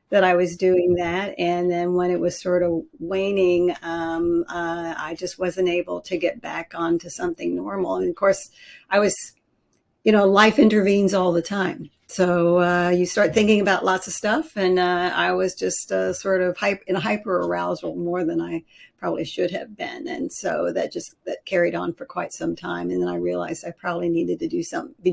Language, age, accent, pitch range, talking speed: English, 50-69, American, 170-200 Hz, 210 wpm